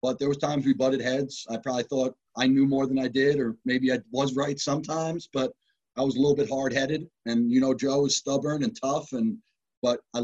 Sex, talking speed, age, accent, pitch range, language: male, 235 wpm, 30-49, American, 115-140 Hz, English